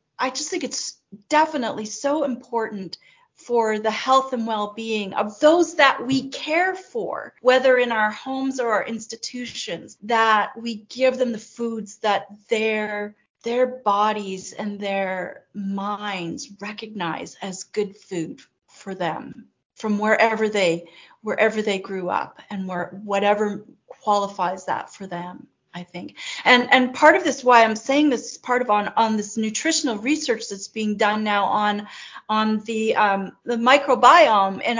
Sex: female